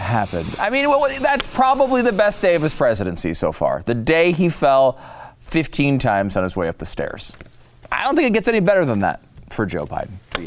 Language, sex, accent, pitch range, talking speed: English, male, American, 110-170 Hz, 225 wpm